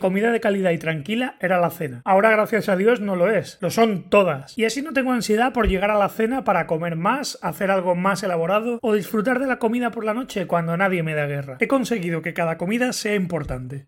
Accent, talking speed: Spanish, 240 wpm